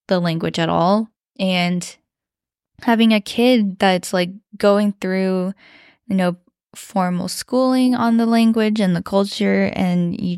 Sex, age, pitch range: female, 10-29, 175-215 Hz